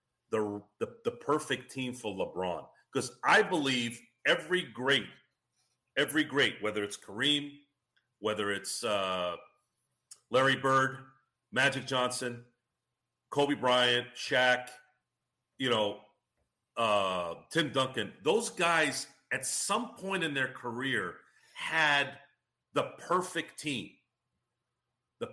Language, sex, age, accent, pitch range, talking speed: English, male, 40-59, American, 120-145 Hz, 105 wpm